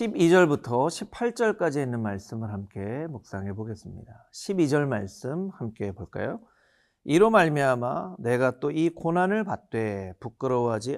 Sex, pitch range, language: male, 115-175 Hz, Korean